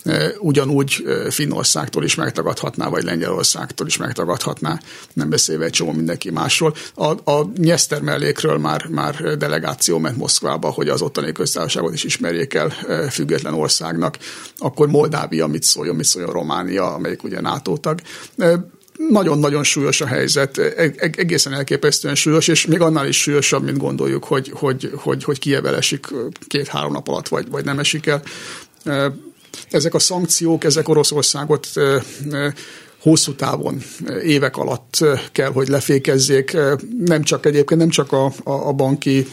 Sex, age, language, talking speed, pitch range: male, 60-79, Hungarian, 140 wpm, 135-150 Hz